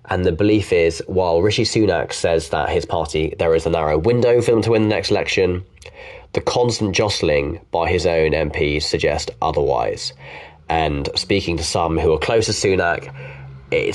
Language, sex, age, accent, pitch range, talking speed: English, male, 20-39, British, 85-135 Hz, 180 wpm